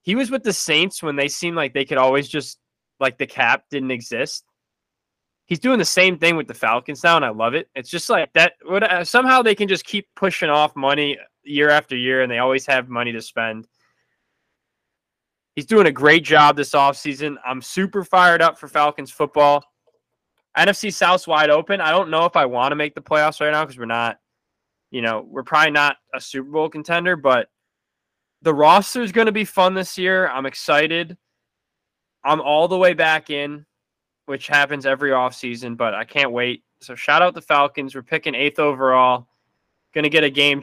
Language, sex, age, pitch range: English, male, 20-39, 135-170 Hz